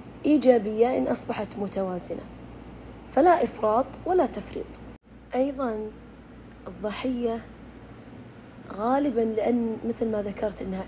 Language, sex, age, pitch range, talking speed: Arabic, female, 20-39, 200-240 Hz, 90 wpm